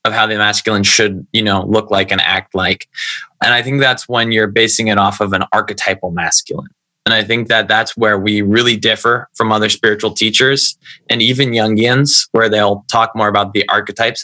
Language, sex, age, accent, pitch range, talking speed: English, male, 20-39, American, 100-125 Hz, 200 wpm